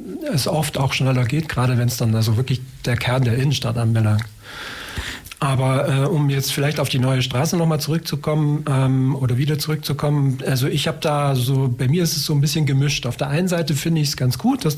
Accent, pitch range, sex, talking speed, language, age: German, 130-160 Hz, male, 220 wpm, German, 40-59